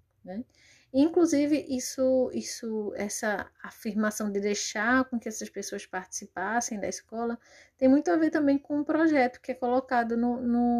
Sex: female